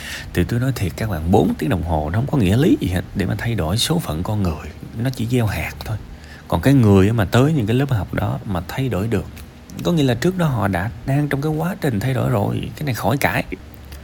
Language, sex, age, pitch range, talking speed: Vietnamese, male, 20-39, 85-125 Hz, 270 wpm